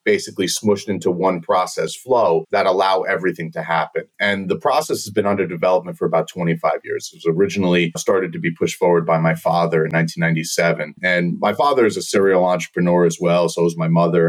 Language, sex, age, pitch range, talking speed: English, male, 30-49, 85-100 Hz, 200 wpm